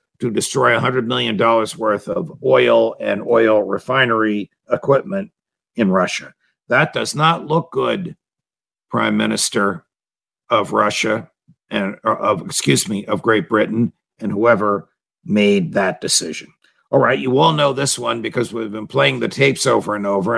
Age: 60-79